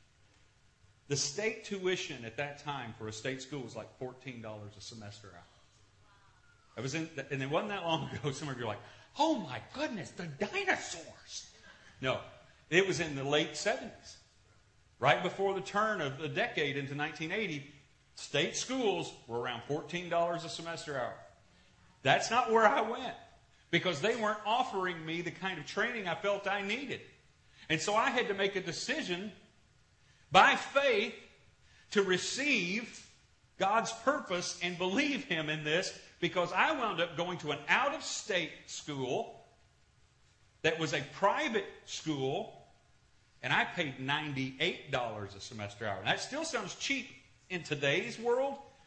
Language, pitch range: English, 125-200 Hz